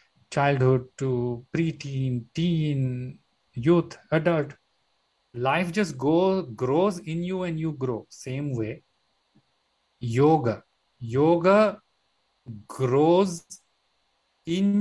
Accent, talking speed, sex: Indian, 85 wpm, male